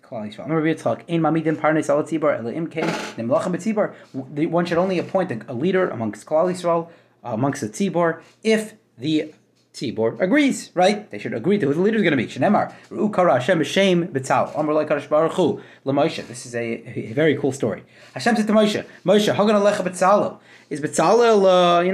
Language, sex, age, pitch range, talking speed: English, male, 30-49, 155-215 Hz, 160 wpm